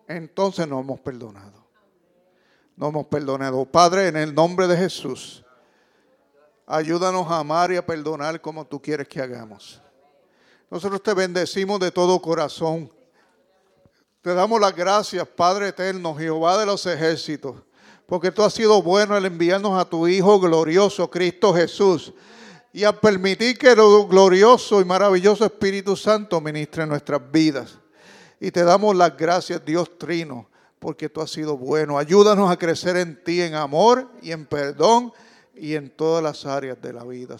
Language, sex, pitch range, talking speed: English, male, 145-190 Hz, 155 wpm